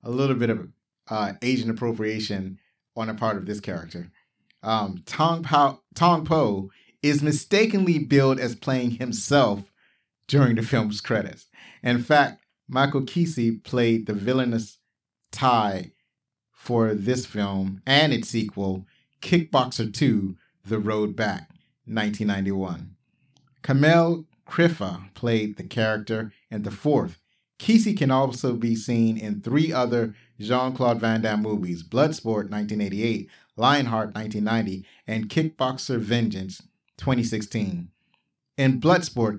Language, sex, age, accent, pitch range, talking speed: English, male, 30-49, American, 105-135 Hz, 120 wpm